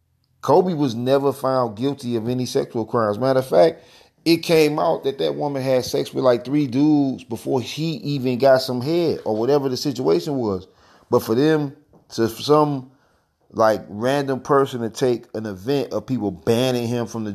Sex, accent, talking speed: male, American, 185 wpm